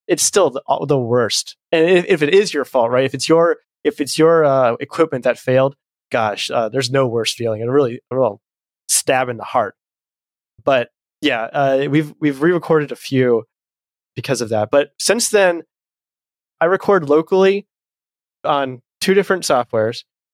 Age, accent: 20-39, American